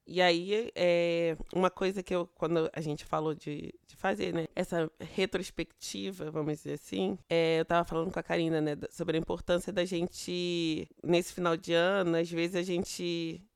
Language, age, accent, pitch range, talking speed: Portuguese, 20-39, Brazilian, 170-215 Hz, 175 wpm